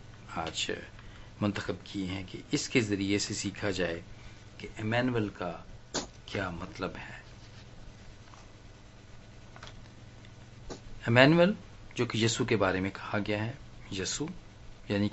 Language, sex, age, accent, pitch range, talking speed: Hindi, male, 50-69, native, 100-115 Hz, 110 wpm